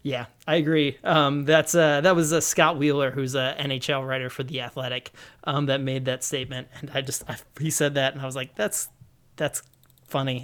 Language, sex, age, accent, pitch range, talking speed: English, male, 20-39, American, 130-160 Hz, 215 wpm